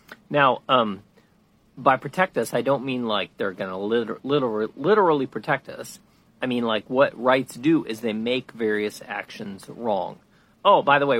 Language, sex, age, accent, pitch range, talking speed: English, male, 40-59, American, 110-150 Hz, 165 wpm